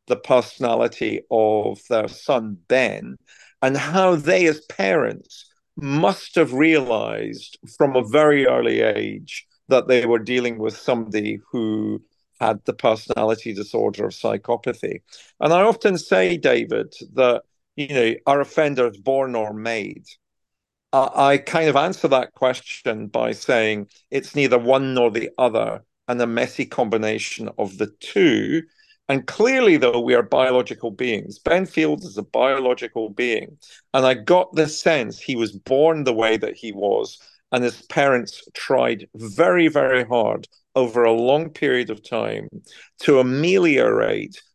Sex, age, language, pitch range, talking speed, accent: male, 50-69, English, 115-160 Hz, 145 wpm, British